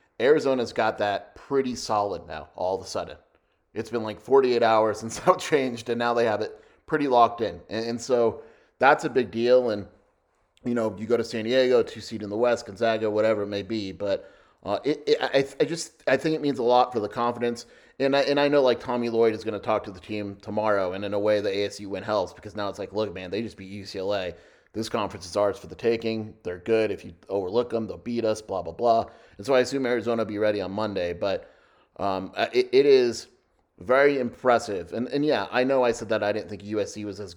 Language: English